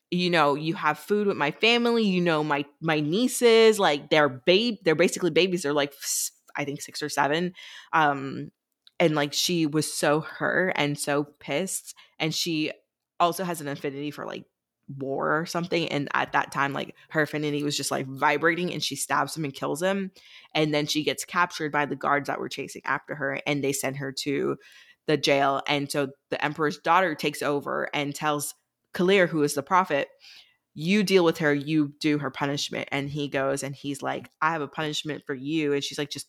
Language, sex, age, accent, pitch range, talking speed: English, female, 20-39, American, 145-165 Hz, 205 wpm